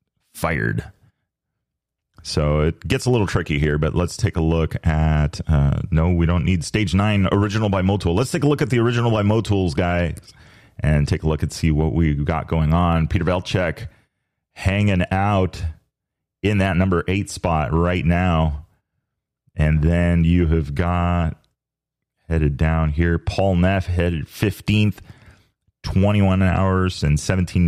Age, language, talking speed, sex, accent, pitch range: 30-49, English, 155 wpm, male, American, 85-100 Hz